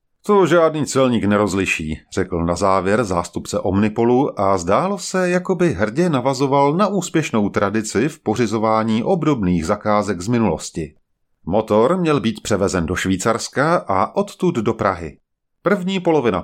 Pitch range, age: 100-150 Hz, 30-49